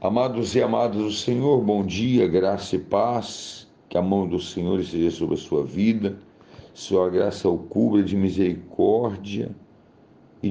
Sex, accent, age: male, Brazilian, 50-69